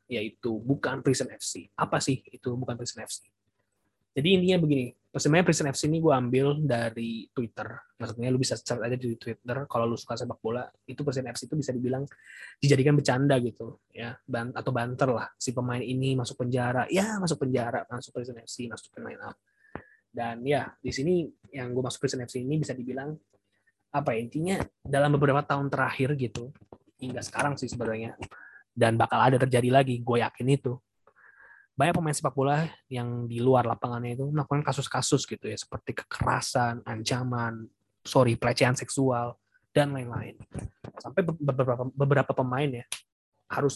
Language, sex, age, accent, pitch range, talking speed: Indonesian, male, 20-39, native, 120-140 Hz, 160 wpm